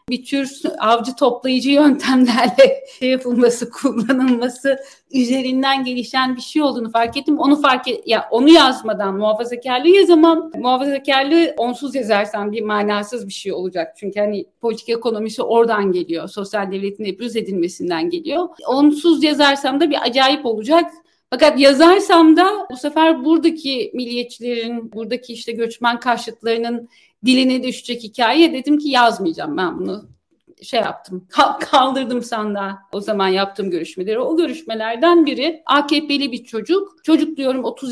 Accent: native